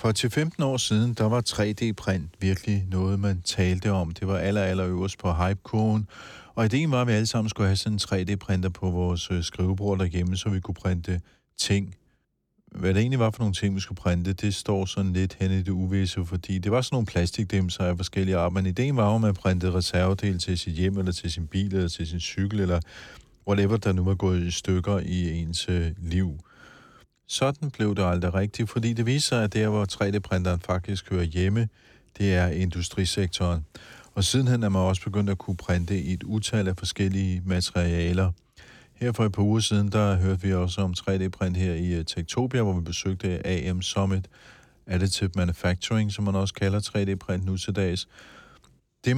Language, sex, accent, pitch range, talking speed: Danish, male, native, 90-105 Hz, 195 wpm